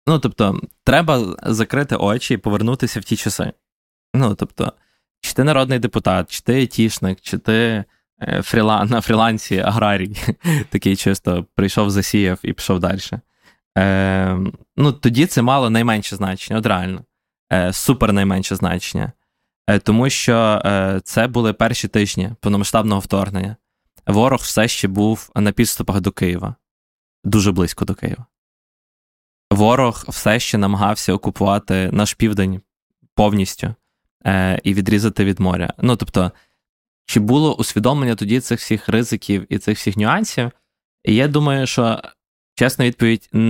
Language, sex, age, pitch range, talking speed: Ukrainian, male, 20-39, 95-115 Hz, 130 wpm